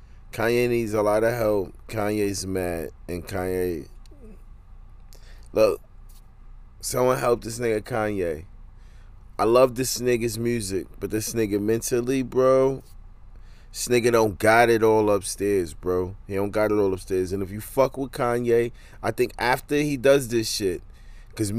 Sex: male